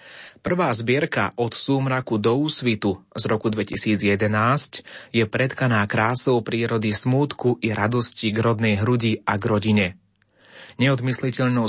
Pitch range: 105-130 Hz